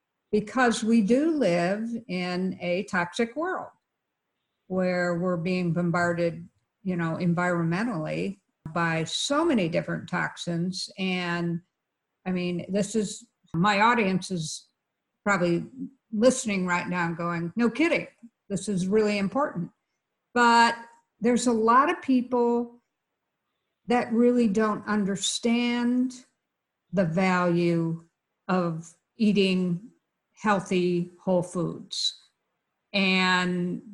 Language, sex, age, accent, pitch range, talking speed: English, female, 50-69, American, 175-220 Hz, 105 wpm